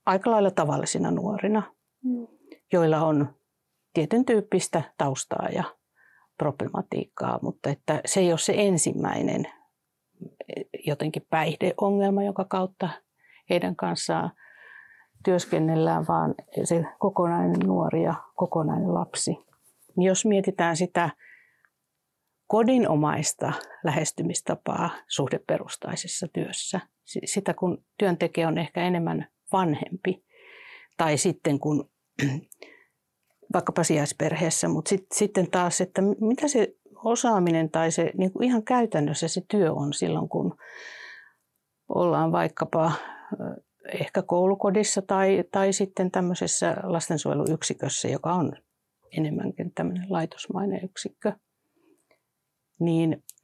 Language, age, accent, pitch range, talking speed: Finnish, 60-79, native, 160-205 Hz, 95 wpm